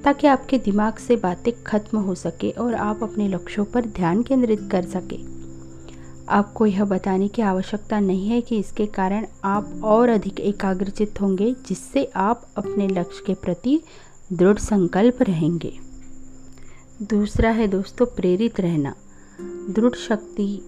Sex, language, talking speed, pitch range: female, Hindi, 140 wpm, 180-225 Hz